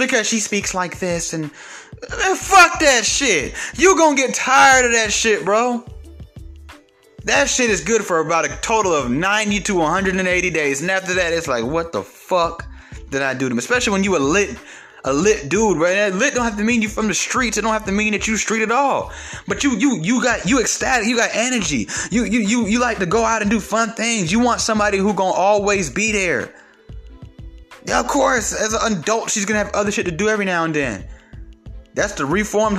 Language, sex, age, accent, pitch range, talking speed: English, male, 20-39, American, 165-220 Hz, 230 wpm